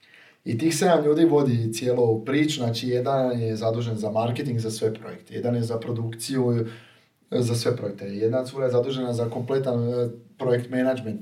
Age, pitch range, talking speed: 30-49, 115-140 Hz, 170 wpm